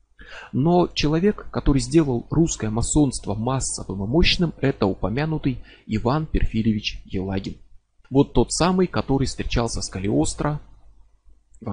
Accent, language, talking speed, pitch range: native, Russian, 115 wpm, 110-165 Hz